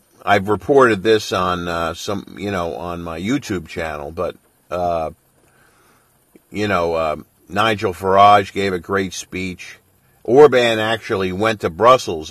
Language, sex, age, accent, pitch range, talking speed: English, male, 50-69, American, 90-115 Hz, 135 wpm